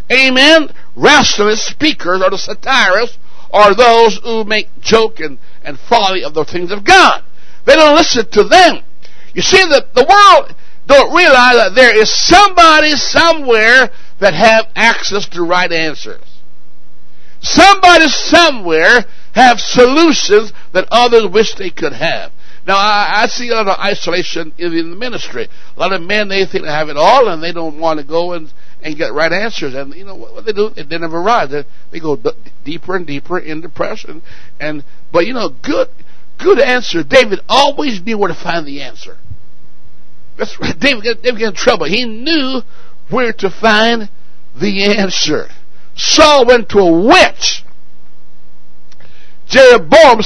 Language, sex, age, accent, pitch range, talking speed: English, male, 60-79, American, 165-255 Hz, 165 wpm